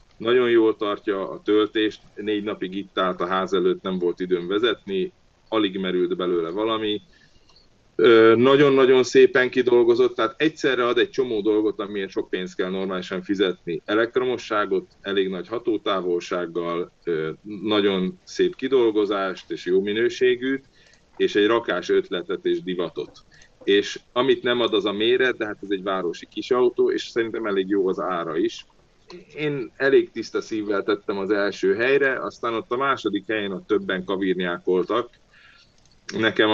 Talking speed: 145 wpm